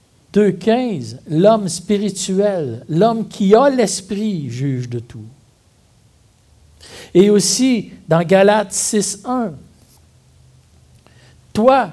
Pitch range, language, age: 140-205 Hz, French, 60-79